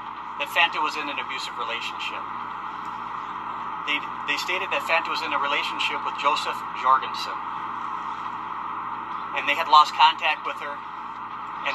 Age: 40-59